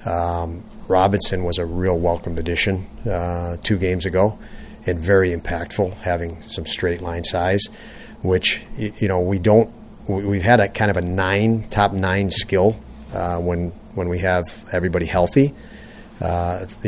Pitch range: 85-95 Hz